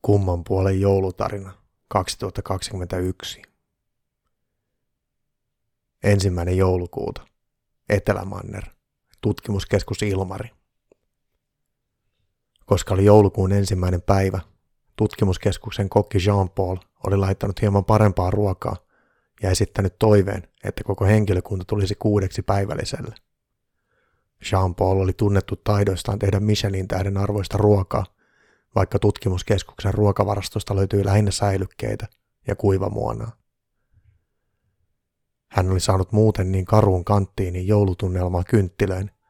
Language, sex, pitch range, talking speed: Finnish, male, 95-105 Hz, 85 wpm